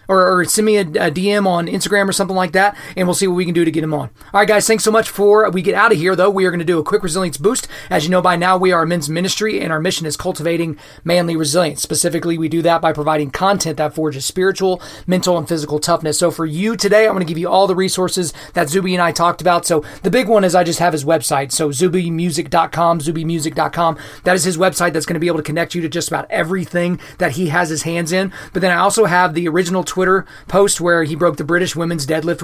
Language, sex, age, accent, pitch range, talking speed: English, male, 30-49, American, 160-185 Hz, 265 wpm